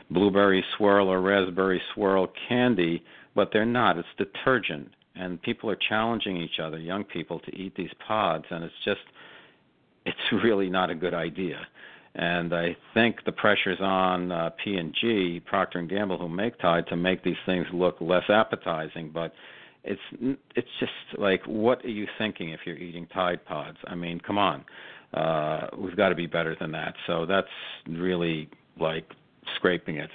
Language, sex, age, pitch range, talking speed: English, male, 50-69, 85-105 Hz, 165 wpm